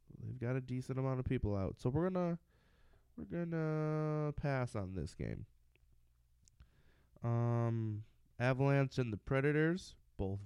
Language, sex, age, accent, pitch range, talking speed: English, male, 20-39, American, 75-125 Hz, 130 wpm